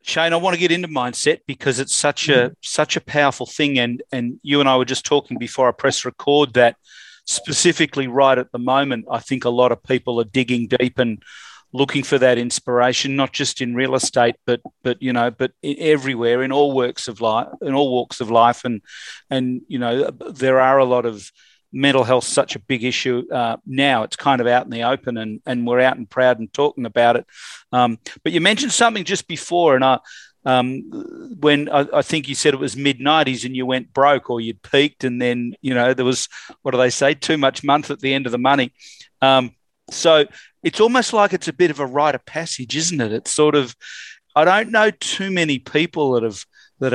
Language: English